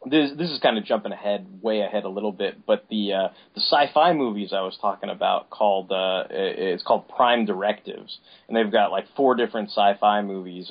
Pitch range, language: 105-140 Hz, English